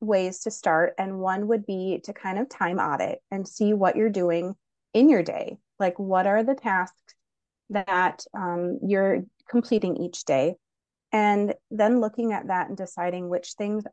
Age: 30-49